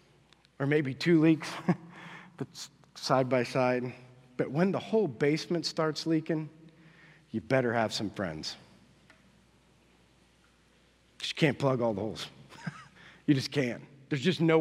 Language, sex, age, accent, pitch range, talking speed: English, male, 40-59, American, 135-195 Hz, 130 wpm